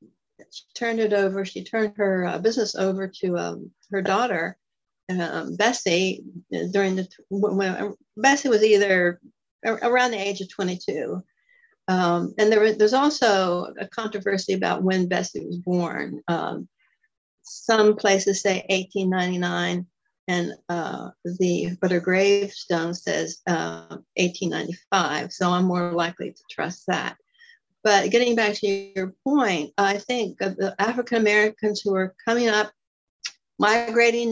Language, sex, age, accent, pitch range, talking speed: English, female, 60-79, American, 185-225 Hz, 140 wpm